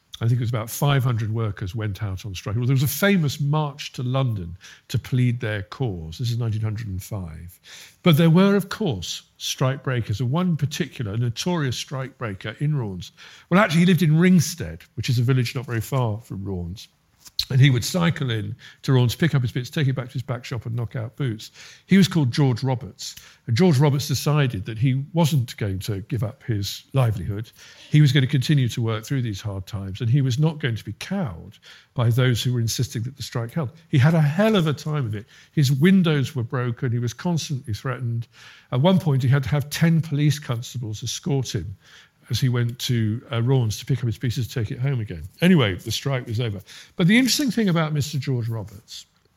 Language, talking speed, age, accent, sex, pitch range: English, 220 wpm, 50-69, British, male, 115-150 Hz